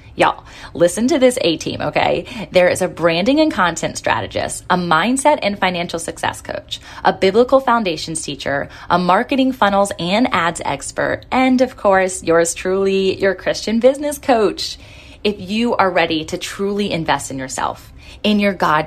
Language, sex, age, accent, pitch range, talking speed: English, female, 20-39, American, 170-205 Hz, 160 wpm